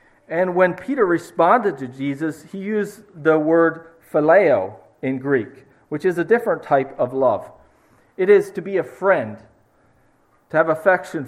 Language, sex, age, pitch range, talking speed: English, male, 40-59, 135-175 Hz, 155 wpm